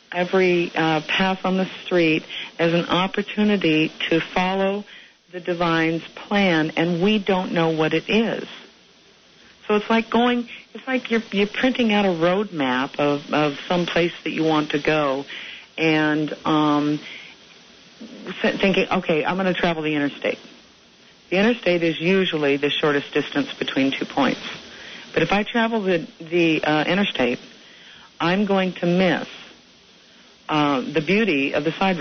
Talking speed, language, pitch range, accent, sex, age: 150 wpm, English, 160-205 Hz, American, female, 60-79